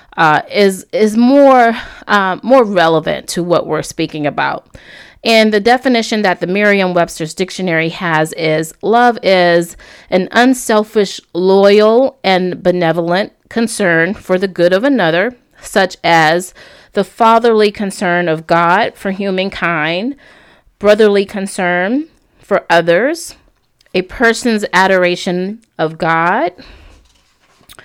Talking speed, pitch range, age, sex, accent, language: 110 wpm, 170-220 Hz, 30-49, female, American, English